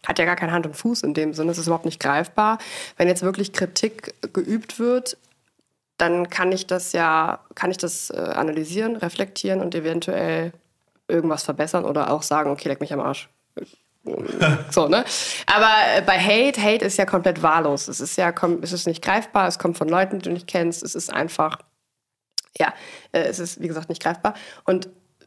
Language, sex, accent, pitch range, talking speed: German, female, German, 170-200 Hz, 190 wpm